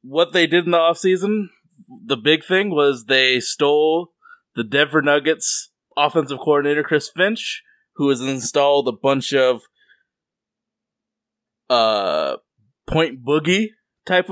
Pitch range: 135-175 Hz